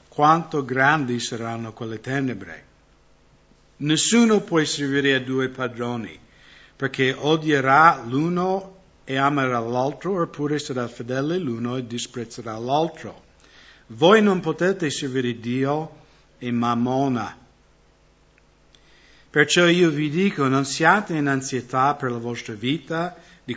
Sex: male